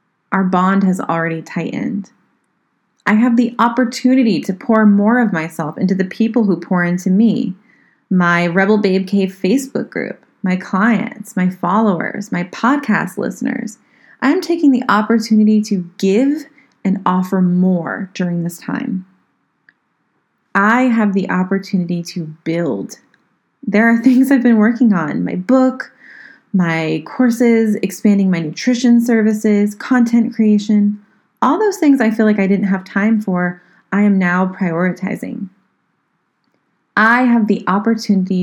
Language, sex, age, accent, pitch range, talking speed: English, female, 20-39, American, 180-230 Hz, 135 wpm